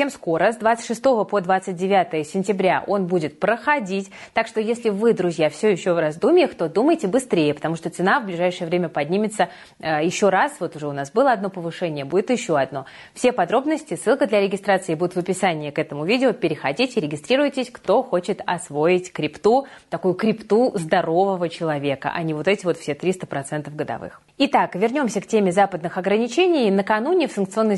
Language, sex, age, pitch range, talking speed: Russian, female, 20-39, 170-225 Hz, 170 wpm